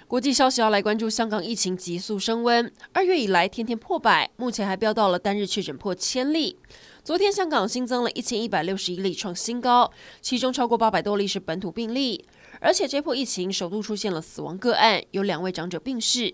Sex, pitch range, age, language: female, 190-245 Hz, 20-39, Chinese